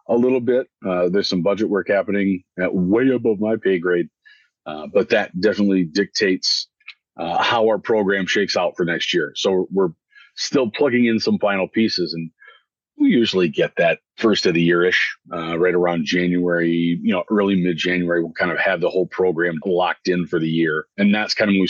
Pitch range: 85-100 Hz